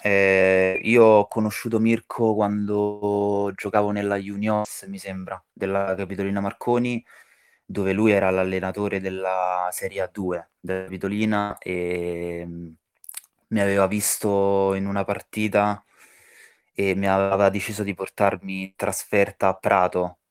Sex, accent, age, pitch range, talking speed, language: male, native, 20-39, 95-105 Hz, 115 wpm, Italian